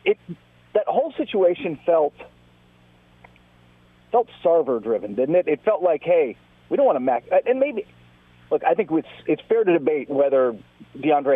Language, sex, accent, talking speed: English, male, American, 165 wpm